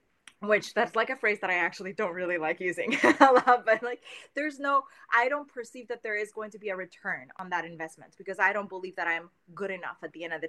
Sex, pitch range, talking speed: female, 180-245 Hz, 255 wpm